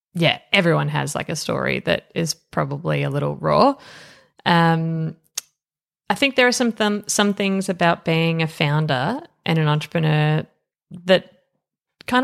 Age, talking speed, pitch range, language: 20-39, 145 wpm, 150-190 Hz, English